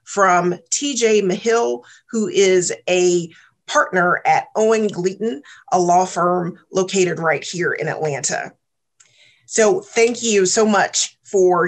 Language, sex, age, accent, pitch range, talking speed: English, female, 40-59, American, 175-210 Hz, 125 wpm